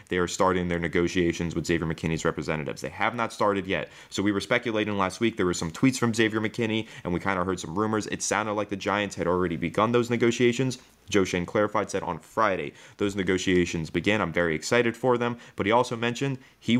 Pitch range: 85-110 Hz